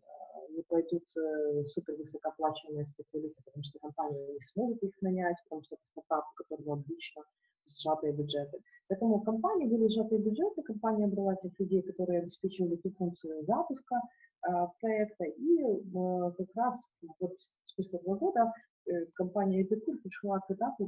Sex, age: female, 30-49